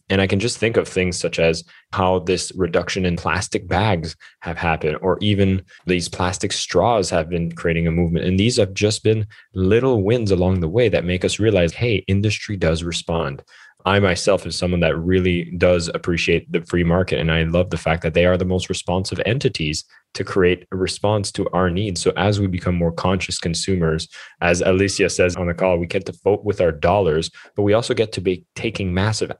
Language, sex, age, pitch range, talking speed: English, male, 20-39, 85-95 Hz, 210 wpm